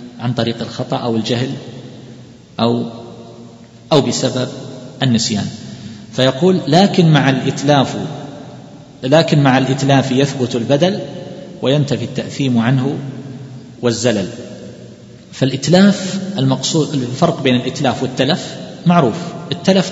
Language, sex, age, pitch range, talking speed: Arabic, male, 40-59, 125-160 Hz, 90 wpm